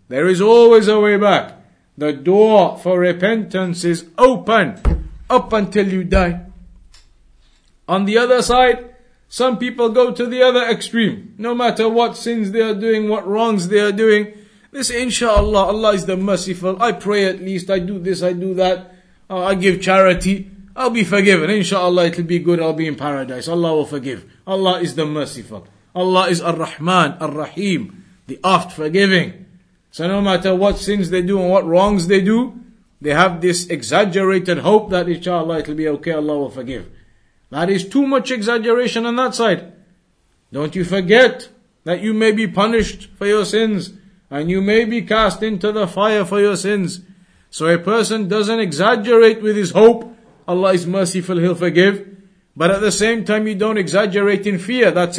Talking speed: 180 wpm